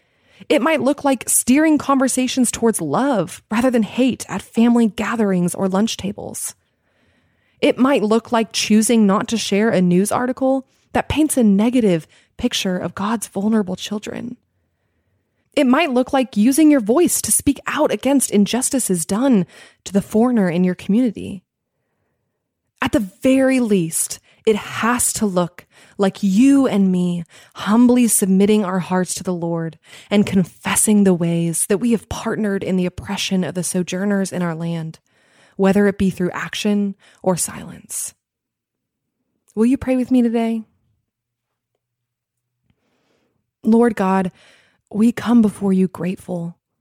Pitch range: 180-235 Hz